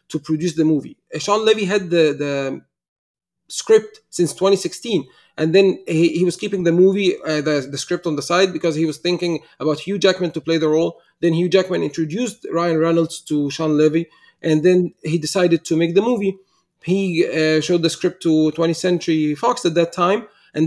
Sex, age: male, 30-49